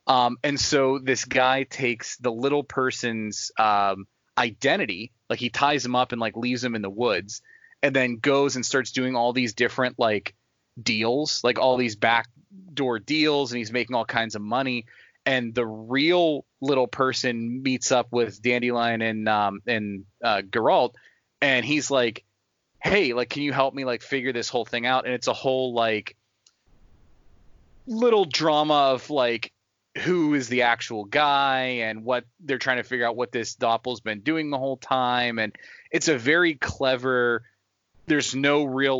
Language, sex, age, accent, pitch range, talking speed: English, male, 20-39, American, 115-140 Hz, 175 wpm